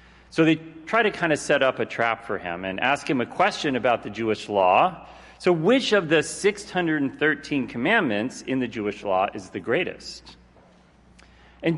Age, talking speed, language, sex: 40-59, 180 wpm, English, male